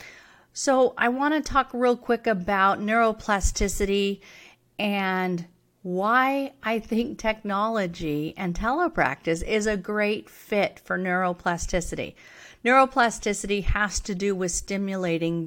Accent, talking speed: American, 110 wpm